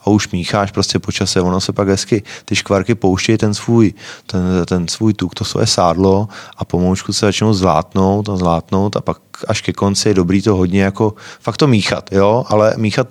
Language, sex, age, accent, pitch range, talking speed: Czech, male, 30-49, native, 95-110 Hz, 200 wpm